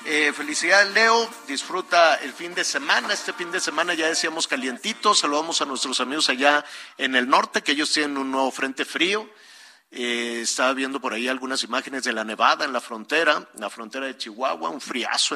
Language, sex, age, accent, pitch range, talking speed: Spanish, male, 50-69, Mexican, 120-160 Hz, 195 wpm